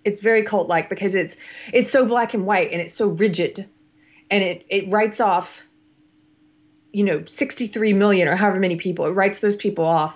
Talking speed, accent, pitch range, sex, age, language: 195 wpm, American, 165-205 Hz, female, 30-49, English